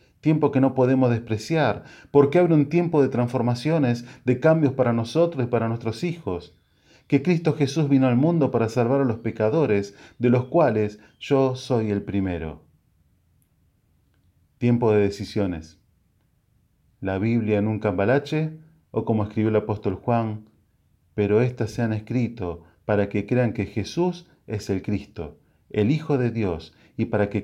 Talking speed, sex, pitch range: 155 wpm, male, 100-130 Hz